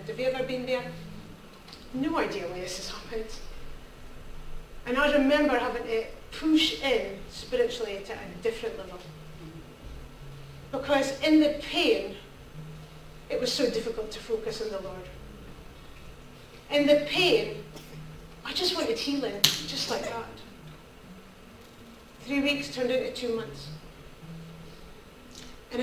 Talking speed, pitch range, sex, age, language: 125 wpm, 235-315 Hz, female, 40-59, English